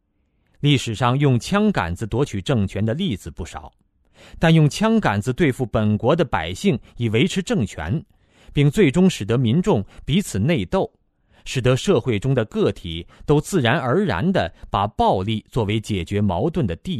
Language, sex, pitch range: Chinese, male, 90-140 Hz